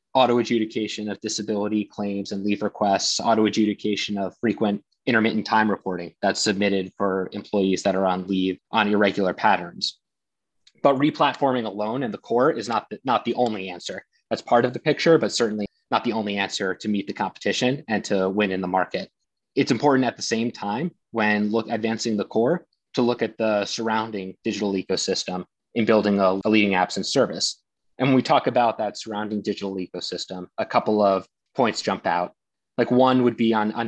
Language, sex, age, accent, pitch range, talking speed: English, male, 20-39, American, 100-120 Hz, 180 wpm